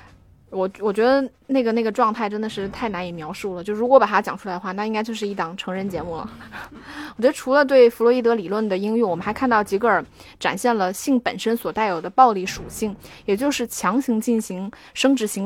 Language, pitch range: Chinese, 190-240 Hz